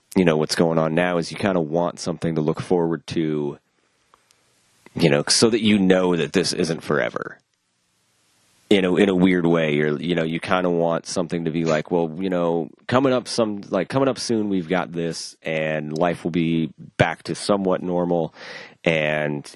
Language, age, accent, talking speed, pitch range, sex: English, 30-49, American, 195 wpm, 80-90 Hz, male